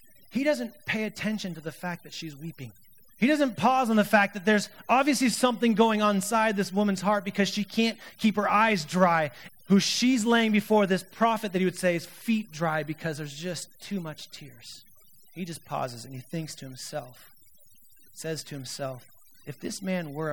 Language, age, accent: English, 30-49, American